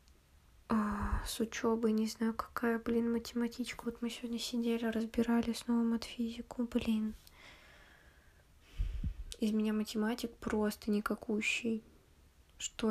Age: 20-39